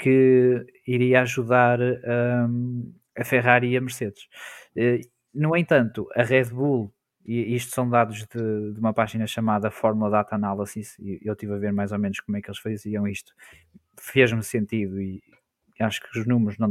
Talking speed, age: 170 wpm, 20-39